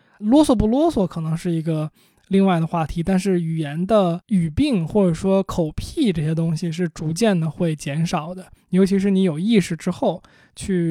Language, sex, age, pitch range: Chinese, male, 20-39, 165-205 Hz